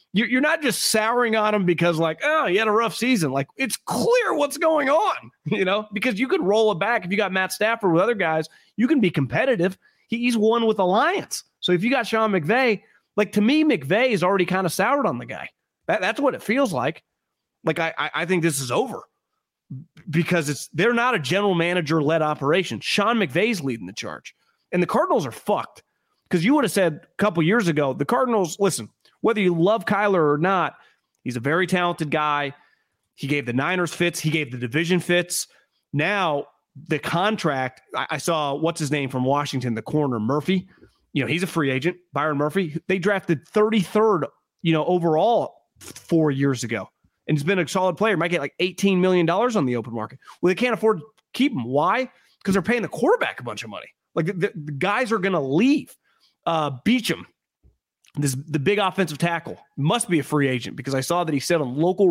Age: 30-49